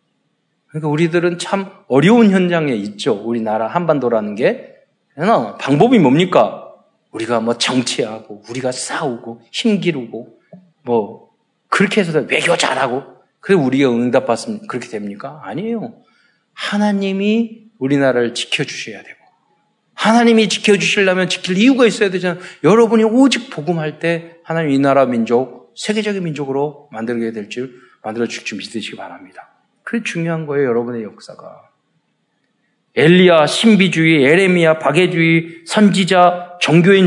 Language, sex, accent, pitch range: Korean, male, native, 135-210 Hz